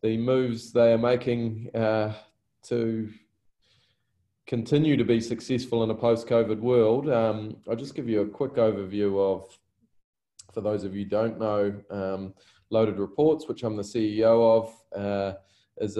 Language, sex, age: English, male, 20-39